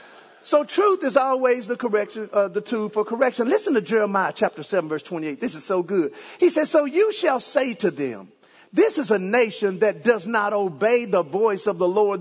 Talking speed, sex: 210 wpm, male